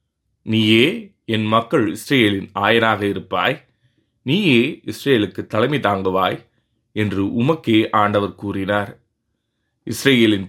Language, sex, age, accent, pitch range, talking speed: Tamil, male, 30-49, native, 100-115 Hz, 85 wpm